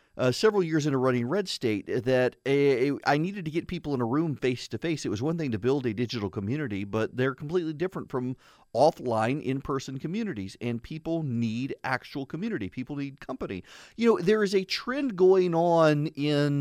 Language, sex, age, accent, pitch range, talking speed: English, male, 40-59, American, 110-150 Hz, 195 wpm